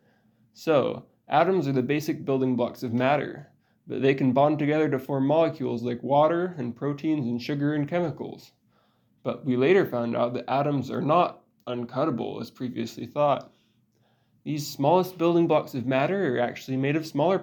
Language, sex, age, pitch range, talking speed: English, male, 20-39, 125-155 Hz, 170 wpm